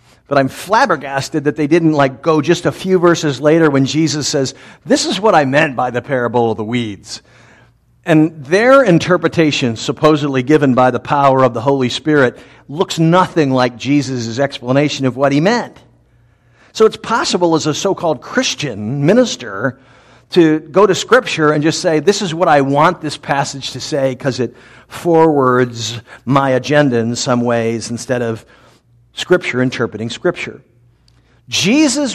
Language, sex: English, male